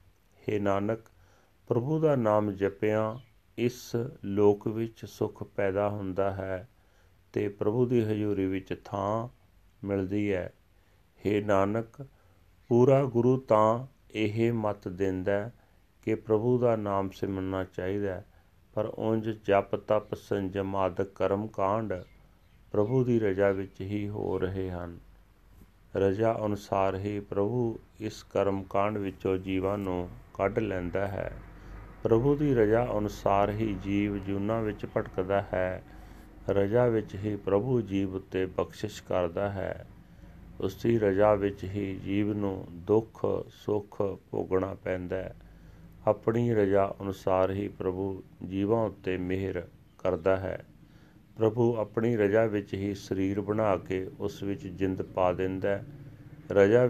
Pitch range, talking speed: 95-110 Hz, 125 wpm